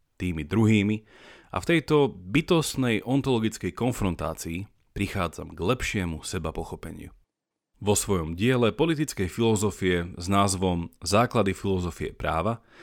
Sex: male